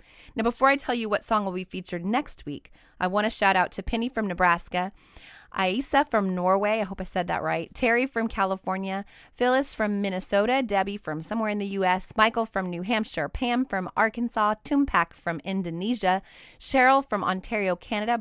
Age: 30-49